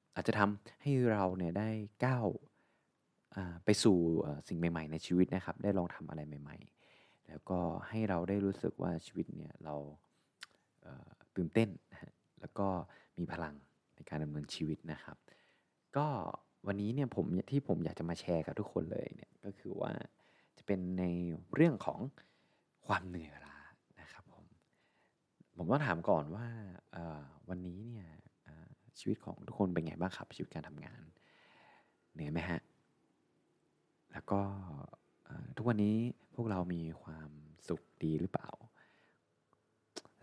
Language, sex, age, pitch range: Thai, male, 20-39, 80-100 Hz